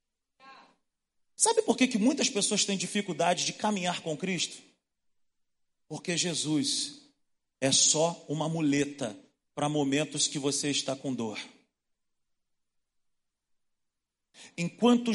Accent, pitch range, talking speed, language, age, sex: Brazilian, 145-210 Hz, 105 wpm, Portuguese, 40-59, male